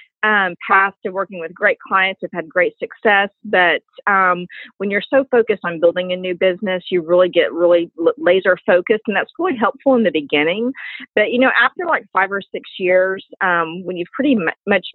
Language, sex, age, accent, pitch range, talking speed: English, female, 40-59, American, 175-220 Hz, 200 wpm